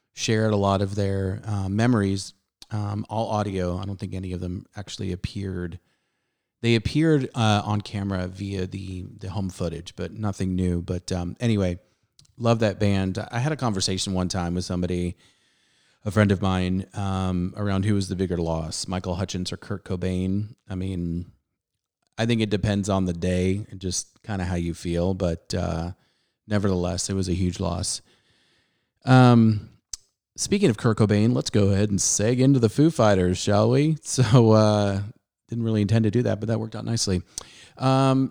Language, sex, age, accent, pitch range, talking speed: English, male, 30-49, American, 95-115 Hz, 180 wpm